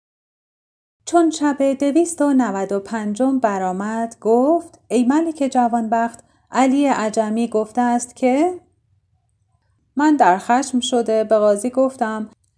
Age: 30-49